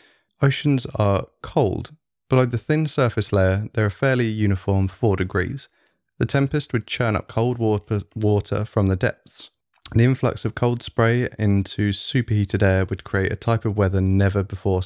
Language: English